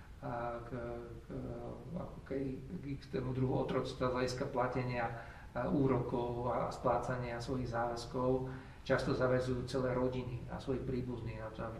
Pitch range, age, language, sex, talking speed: 120-135 Hz, 50-69, Slovak, male, 120 wpm